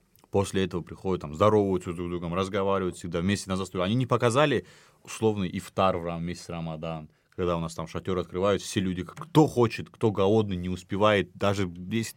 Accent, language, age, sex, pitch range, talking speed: native, Russian, 30-49, male, 90-115 Hz, 190 wpm